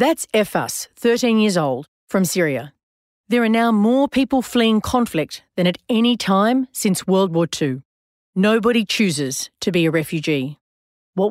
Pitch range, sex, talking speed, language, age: 160-225 Hz, female, 160 wpm, English, 40-59